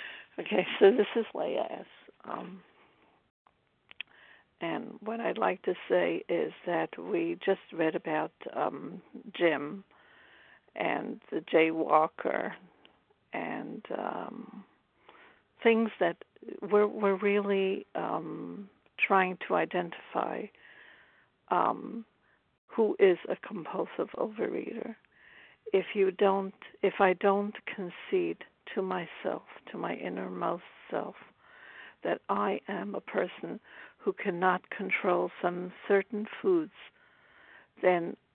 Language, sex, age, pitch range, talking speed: English, female, 60-79, 180-220 Hz, 105 wpm